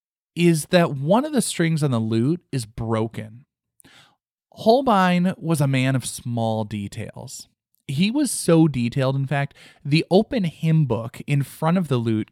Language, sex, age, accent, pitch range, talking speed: English, male, 20-39, American, 115-160 Hz, 160 wpm